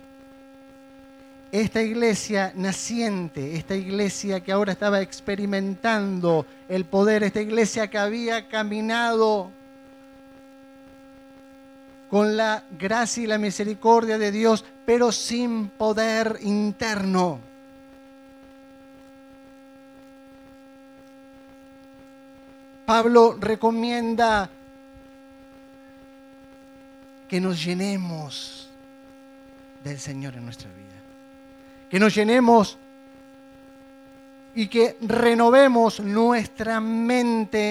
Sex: male